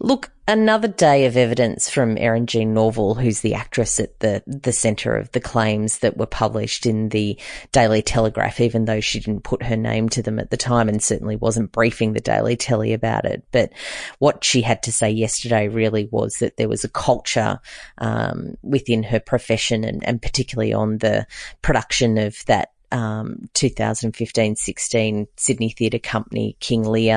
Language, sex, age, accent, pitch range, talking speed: English, female, 30-49, Australian, 110-120 Hz, 175 wpm